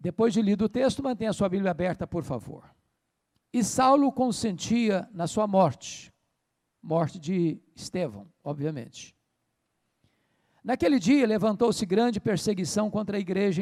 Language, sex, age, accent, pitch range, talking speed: Portuguese, male, 60-79, Brazilian, 165-225 Hz, 130 wpm